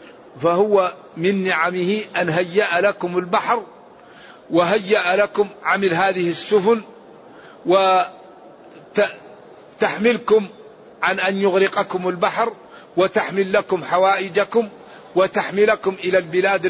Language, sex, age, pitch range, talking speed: Arabic, male, 50-69, 155-195 Hz, 85 wpm